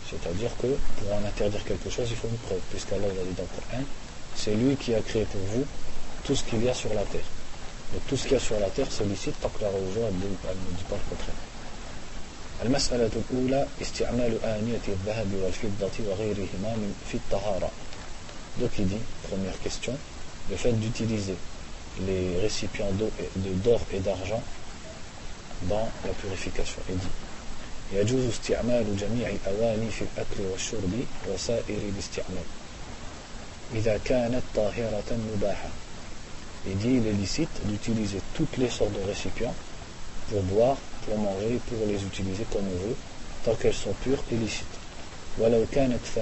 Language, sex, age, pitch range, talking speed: French, male, 40-59, 95-115 Hz, 120 wpm